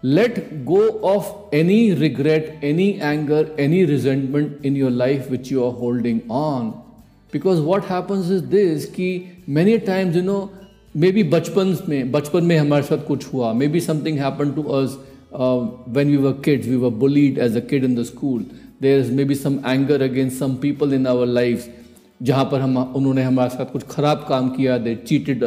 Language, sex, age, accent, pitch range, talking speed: Hindi, male, 50-69, native, 125-160 Hz, 185 wpm